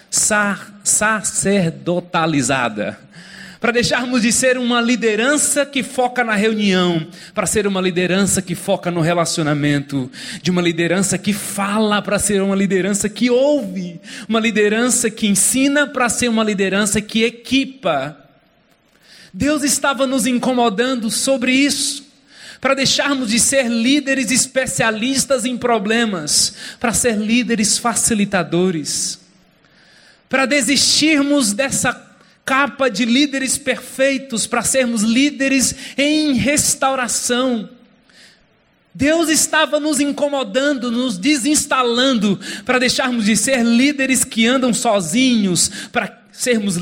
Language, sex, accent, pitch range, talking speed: Portuguese, male, Brazilian, 200-260 Hz, 110 wpm